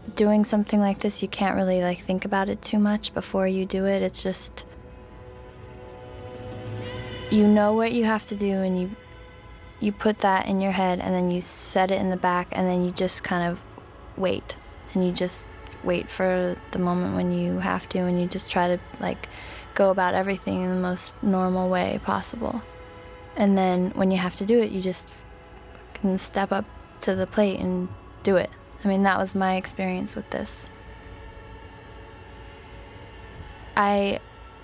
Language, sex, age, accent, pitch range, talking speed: English, female, 20-39, American, 180-195 Hz, 180 wpm